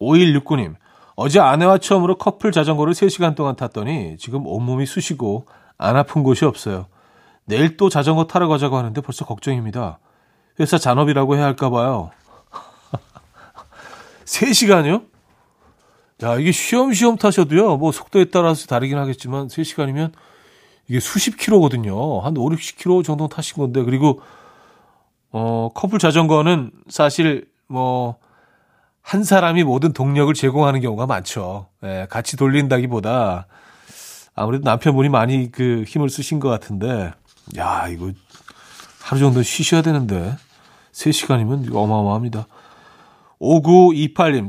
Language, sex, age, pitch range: Korean, male, 40-59, 125-165 Hz